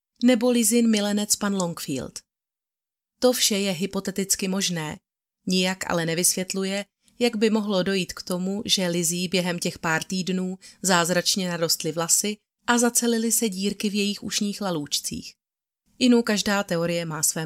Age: 30-49